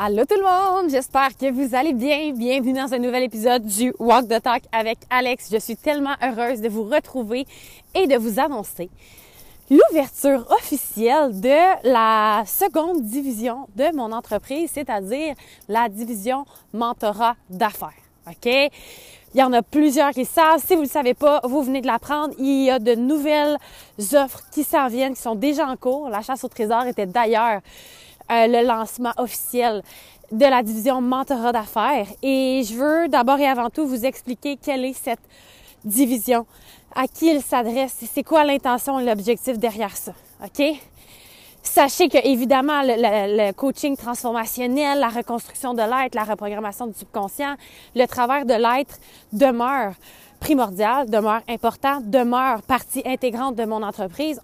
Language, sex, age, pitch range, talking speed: French, female, 20-39, 230-280 Hz, 165 wpm